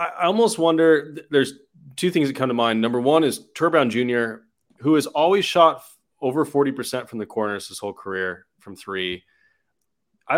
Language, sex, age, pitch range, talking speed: English, male, 30-49, 105-145 Hz, 175 wpm